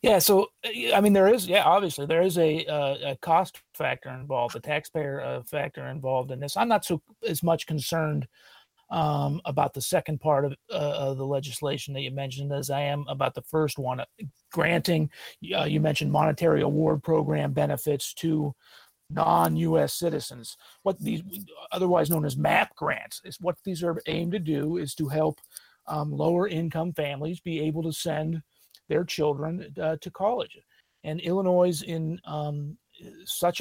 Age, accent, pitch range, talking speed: 40-59, American, 145-175 Hz, 170 wpm